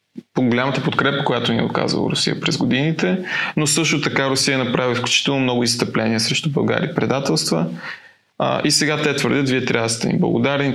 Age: 20-39